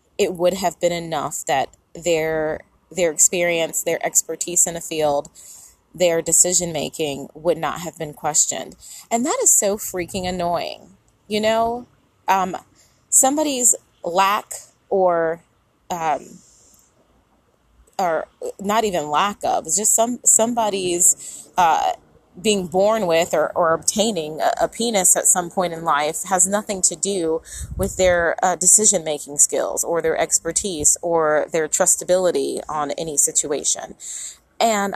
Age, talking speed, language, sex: 30-49, 130 wpm, English, female